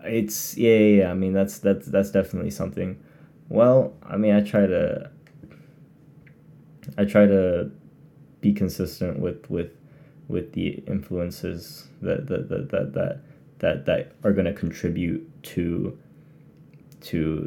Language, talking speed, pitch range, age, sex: English, 130 wpm, 100-140 Hz, 20-39, male